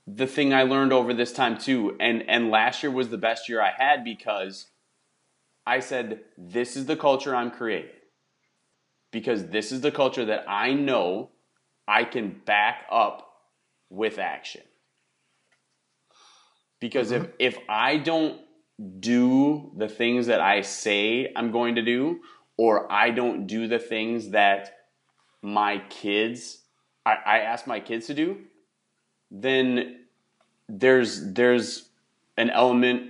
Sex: male